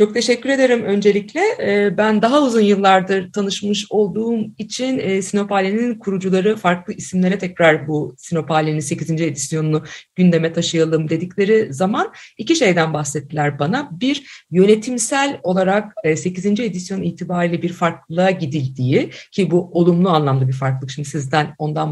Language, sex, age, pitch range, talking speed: Turkish, female, 50-69, 155-215 Hz, 125 wpm